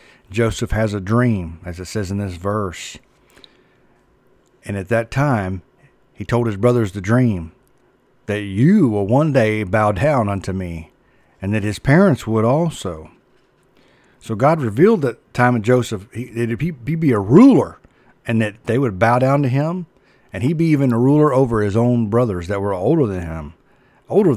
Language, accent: English, American